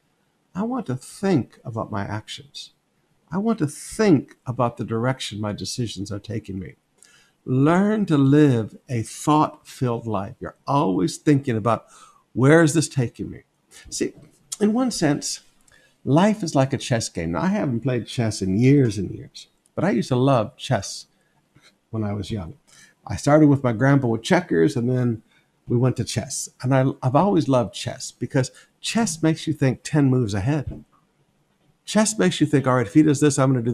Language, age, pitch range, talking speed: English, 60-79, 120-165 Hz, 180 wpm